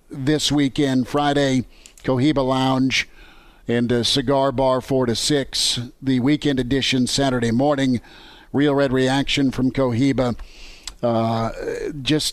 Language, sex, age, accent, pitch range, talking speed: English, male, 50-69, American, 125-150 Hz, 110 wpm